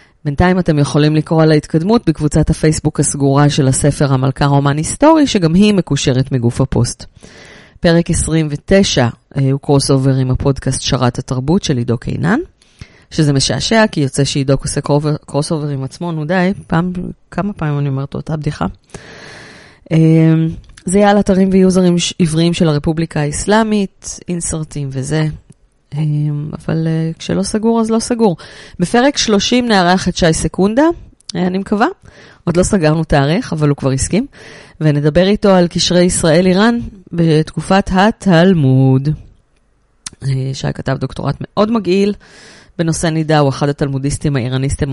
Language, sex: Hebrew, female